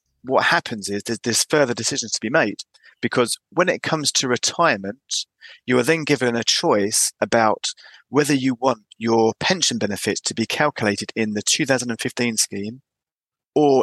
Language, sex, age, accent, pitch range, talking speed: English, male, 30-49, British, 110-140 Hz, 160 wpm